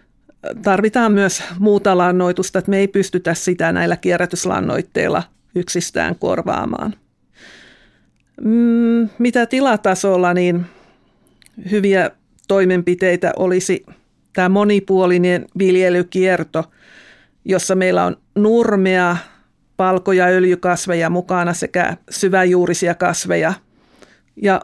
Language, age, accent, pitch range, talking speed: Finnish, 50-69, native, 180-200 Hz, 80 wpm